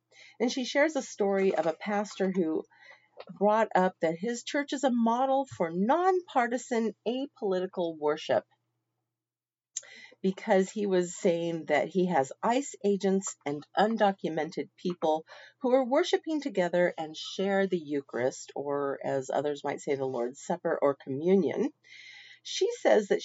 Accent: American